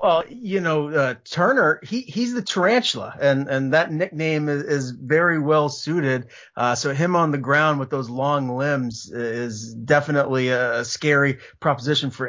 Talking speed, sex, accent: 165 wpm, male, American